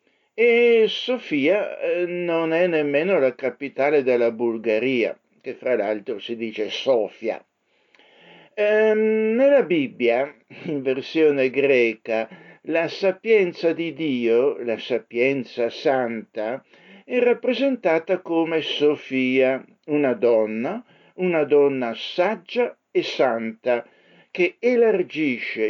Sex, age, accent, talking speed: male, 60-79, native, 95 wpm